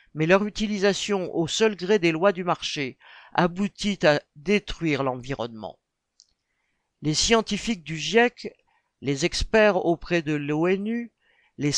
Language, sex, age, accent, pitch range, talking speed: French, male, 60-79, French, 165-215 Hz, 120 wpm